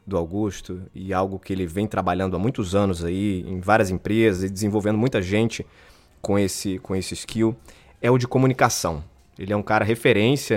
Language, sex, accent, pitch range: Portuguese, male, Brazilian, 95-125 Hz